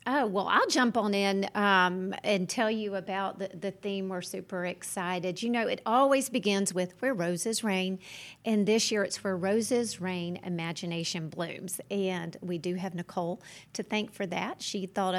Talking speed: 180 wpm